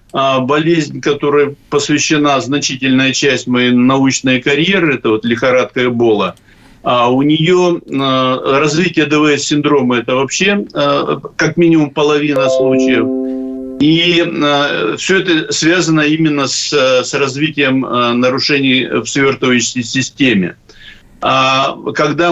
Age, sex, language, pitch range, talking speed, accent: 50-69, male, Russian, 125-155 Hz, 95 wpm, native